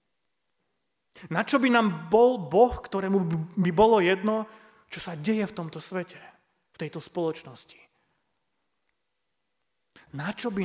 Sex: male